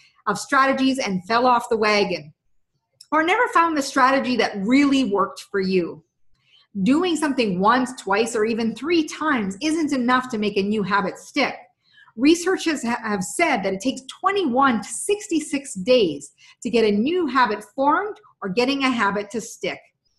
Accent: American